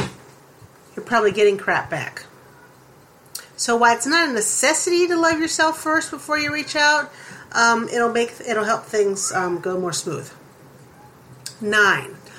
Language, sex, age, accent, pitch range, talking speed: English, female, 40-59, American, 205-295 Hz, 140 wpm